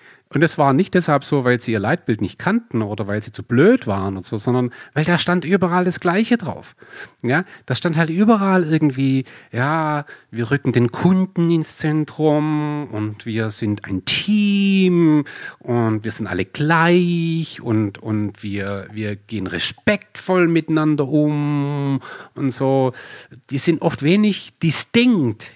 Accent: German